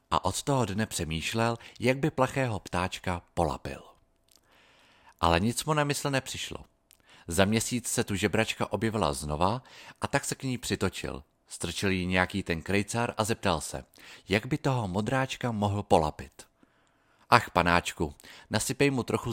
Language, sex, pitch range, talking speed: Czech, male, 85-115 Hz, 150 wpm